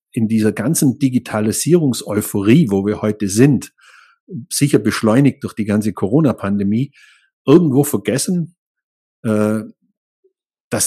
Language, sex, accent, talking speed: German, male, German, 95 wpm